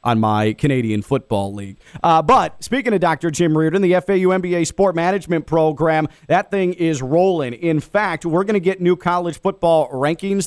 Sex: male